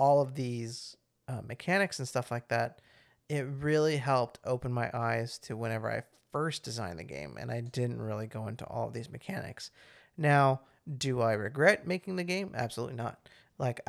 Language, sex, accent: English, male, American